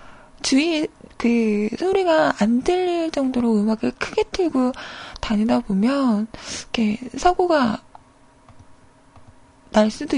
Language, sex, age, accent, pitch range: Korean, female, 20-39, native, 220-295 Hz